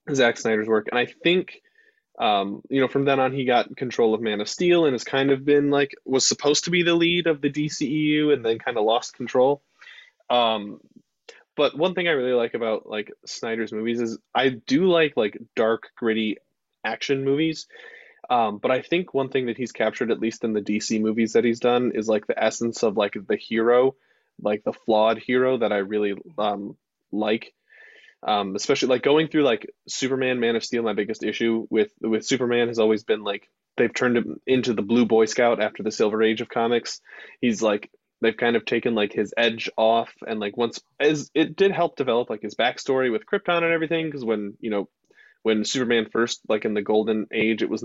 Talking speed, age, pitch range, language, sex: 210 wpm, 20-39, 110-145 Hz, English, male